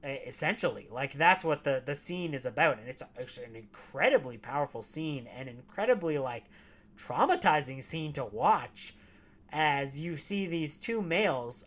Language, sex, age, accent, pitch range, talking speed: English, male, 30-49, American, 130-155 Hz, 150 wpm